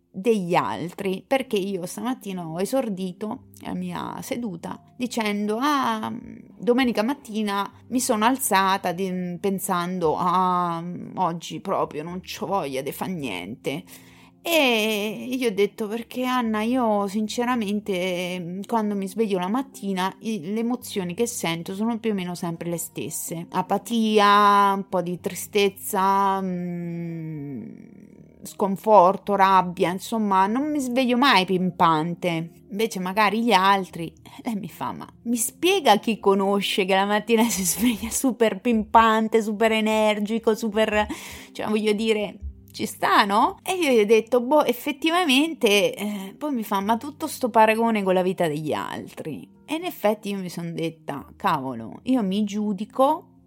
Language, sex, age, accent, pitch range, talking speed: Italian, female, 30-49, native, 185-230 Hz, 140 wpm